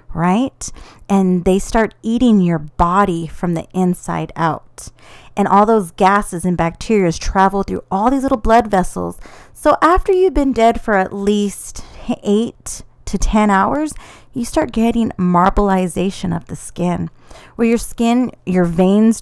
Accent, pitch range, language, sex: American, 180-230 Hz, English, female